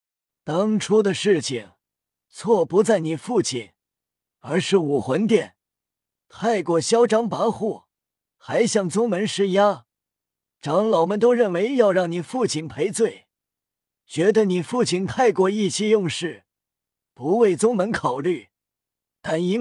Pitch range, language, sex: 155-215 Hz, Chinese, male